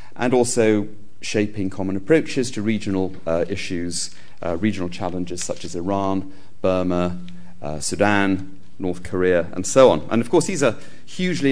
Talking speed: 150 wpm